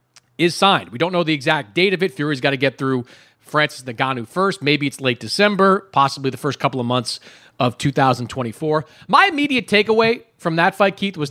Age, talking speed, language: 40-59, 200 wpm, English